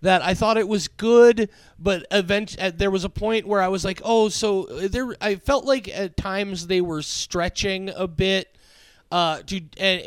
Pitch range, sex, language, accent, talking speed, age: 150-190 Hz, male, English, American, 190 wpm, 30-49